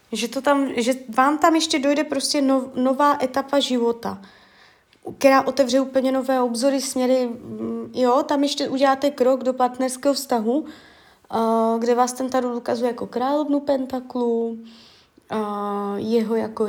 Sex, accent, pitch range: female, native, 225-275 Hz